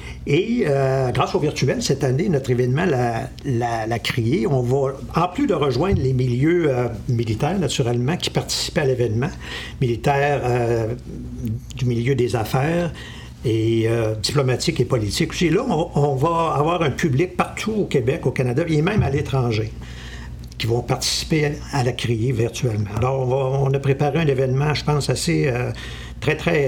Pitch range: 115-140 Hz